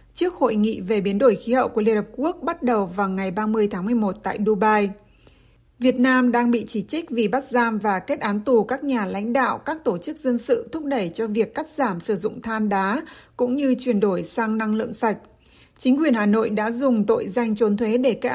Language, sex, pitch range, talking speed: Vietnamese, female, 210-250 Hz, 240 wpm